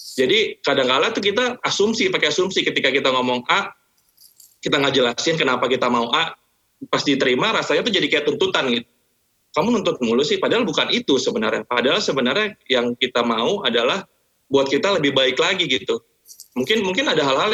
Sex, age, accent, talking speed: male, 20-39, native, 170 wpm